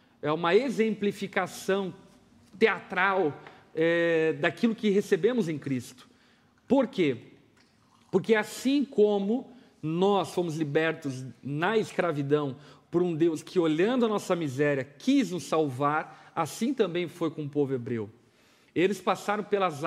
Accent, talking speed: Brazilian, 120 wpm